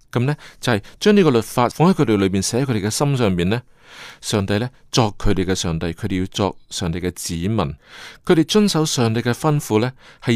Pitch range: 105-150 Hz